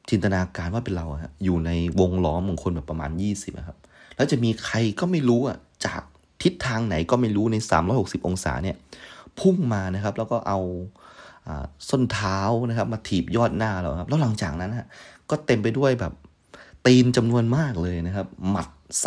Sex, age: male, 30-49